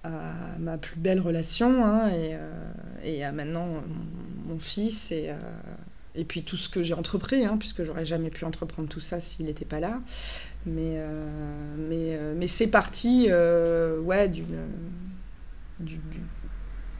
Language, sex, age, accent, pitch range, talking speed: French, female, 20-39, French, 170-205 Hz, 170 wpm